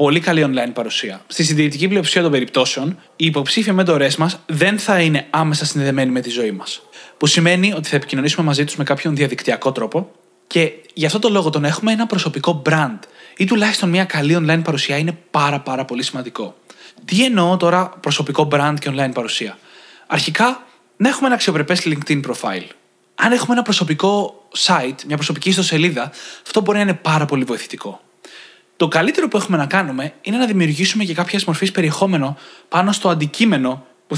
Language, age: Greek, 20-39